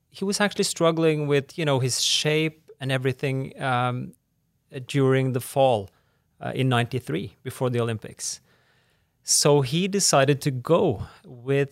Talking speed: 140 wpm